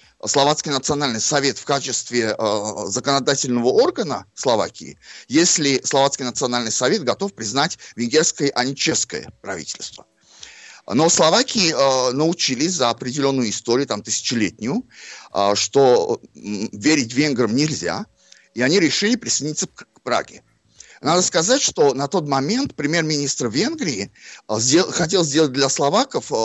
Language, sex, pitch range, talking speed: Russian, male, 120-155 Hz, 120 wpm